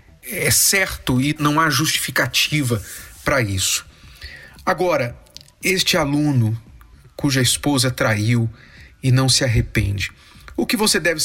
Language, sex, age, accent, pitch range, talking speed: Portuguese, male, 40-59, Brazilian, 120-170 Hz, 115 wpm